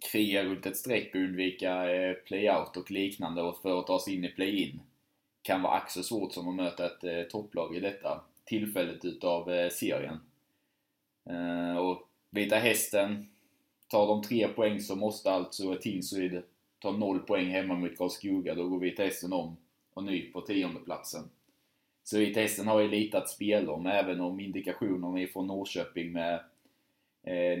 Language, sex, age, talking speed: Swedish, male, 20-39, 165 wpm